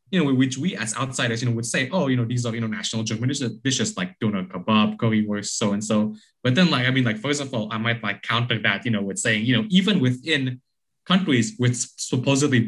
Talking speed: 235 wpm